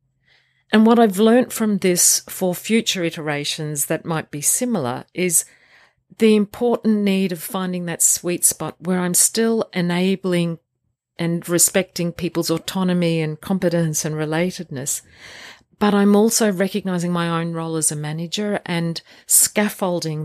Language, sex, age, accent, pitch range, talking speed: English, female, 40-59, Australian, 155-195 Hz, 135 wpm